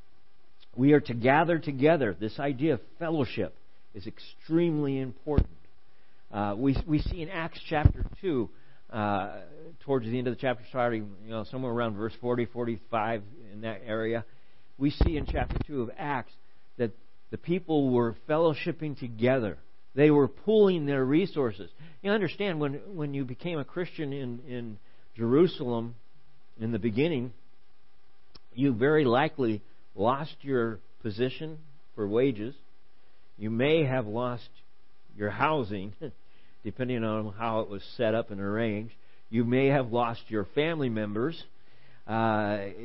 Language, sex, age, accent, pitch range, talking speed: English, male, 50-69, American, 110-145 Hz, 140 wpm